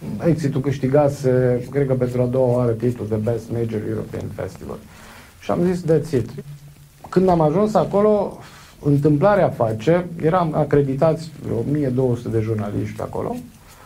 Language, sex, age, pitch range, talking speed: Romanian, male, 50-69, 115-180 Hz, 140 wpm